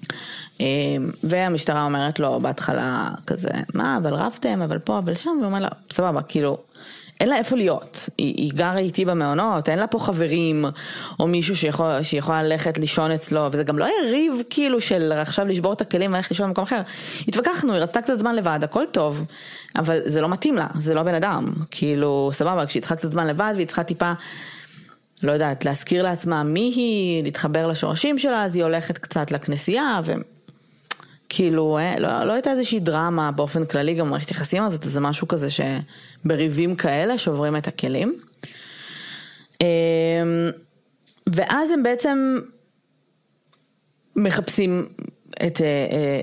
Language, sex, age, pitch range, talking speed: Hebrew, female, 20-39, 155-205 Hz, 155 wpm